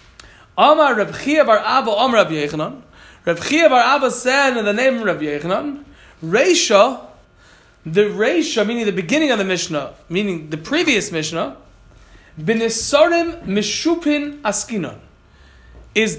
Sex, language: male, Malay